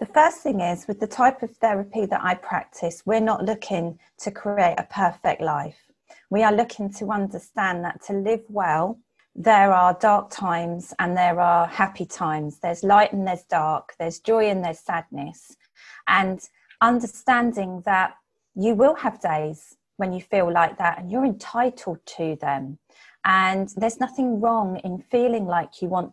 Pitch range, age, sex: 180-230 Hz, 30-49, female